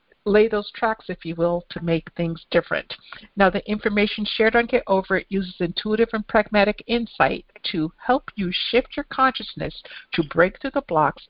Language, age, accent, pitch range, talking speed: English, 60-79, American, 165-210 Hz, 180 wpm